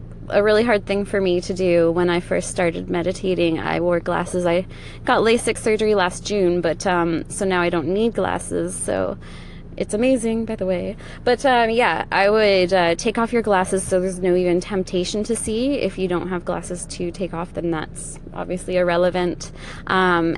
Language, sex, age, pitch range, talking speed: English, female, 20-39, 175-205 Hz, 195 wpm